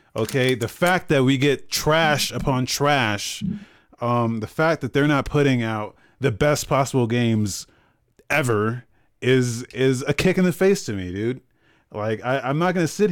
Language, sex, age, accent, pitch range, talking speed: English, male, 30-49, American, 110-145 Hz, 175 wpm